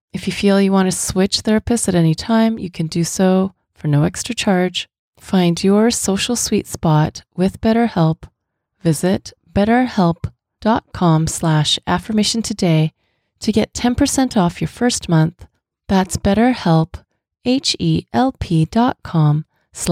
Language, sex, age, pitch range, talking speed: English, female, 30-49, 160-200 Hz, 120 wpm